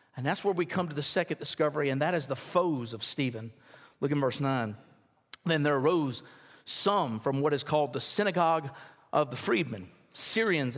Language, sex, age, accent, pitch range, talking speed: English, male, 50-69, American, 170-240 Hz, 190 wpm